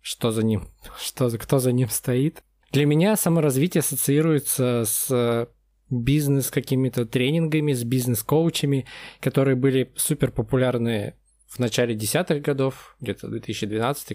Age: 20-39